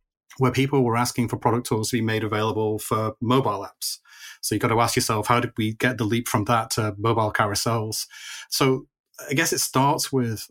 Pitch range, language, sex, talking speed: 110-125 Hz, English, male, 210 wpm